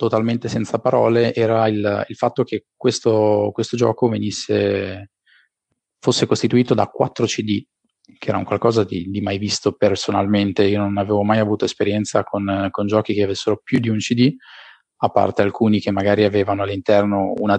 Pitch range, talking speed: 100-115 Hz, 165 wpm